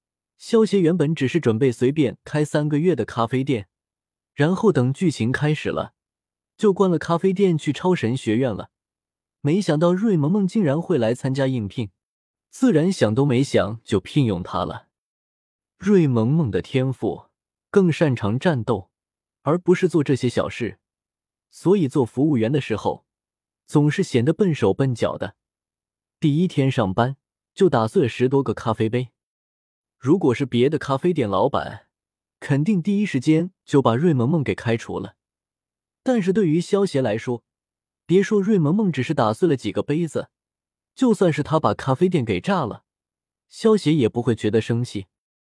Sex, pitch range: male, 115-170 Hz